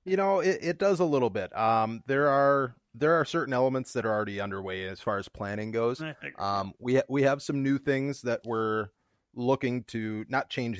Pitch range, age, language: 105-130 Hz, 30-49, English